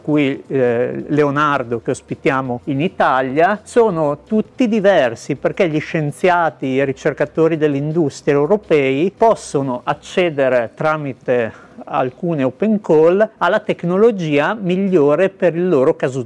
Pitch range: 140-185 Hz